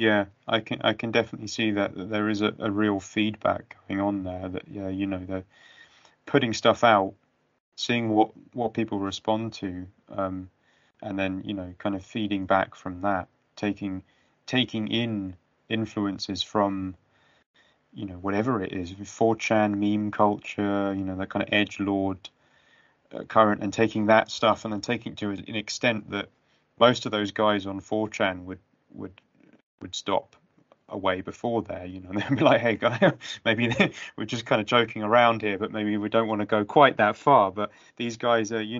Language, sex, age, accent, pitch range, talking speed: English, male, 30-49, British, 95-110 Hz, 185 wpm